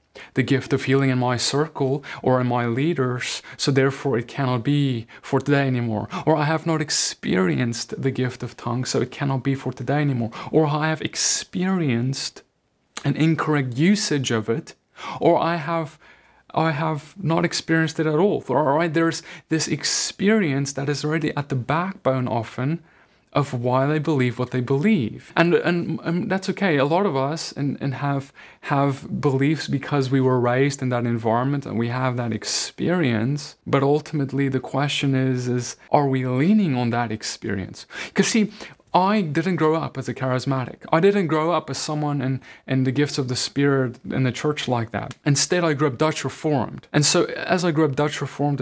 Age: 20-39